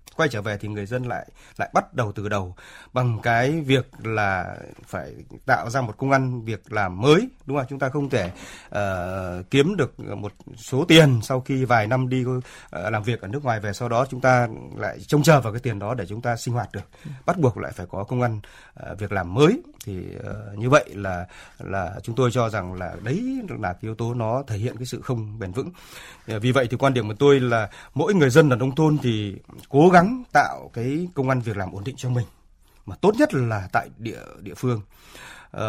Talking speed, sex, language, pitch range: 230 wpm, male, Vietnamese, 105-145 Hz